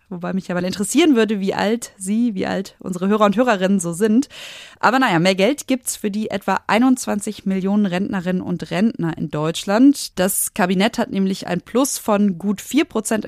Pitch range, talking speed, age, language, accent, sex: 180-230 Hz, 190 wpm, 20-39, German, German, female